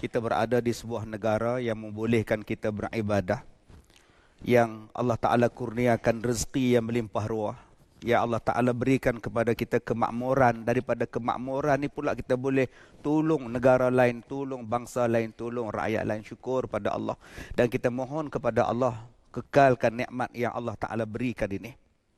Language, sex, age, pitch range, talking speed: Malay, male, 50-69, 120-160 Hz, 145 wpm